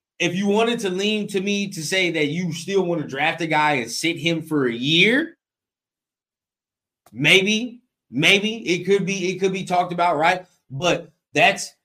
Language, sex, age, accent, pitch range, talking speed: English, male, 20-39, American, 155-205 Hz, 180 wpm